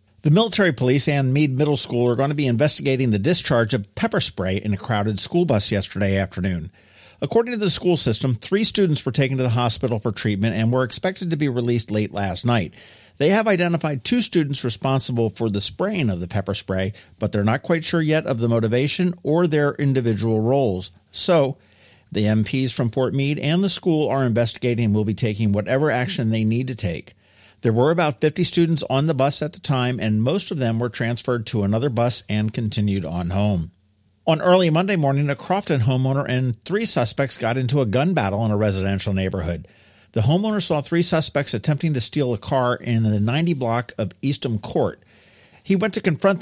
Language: English